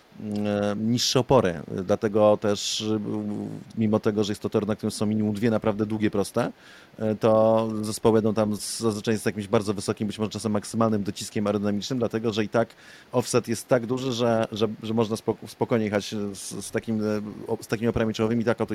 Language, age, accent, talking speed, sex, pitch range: Polish, 30-49, native, 180 wpm, male, 105-115 Hz